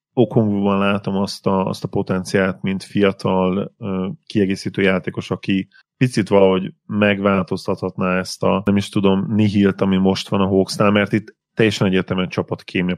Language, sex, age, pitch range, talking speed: Hungarian, male, 30-49, 95-100 Hz, 150 wpm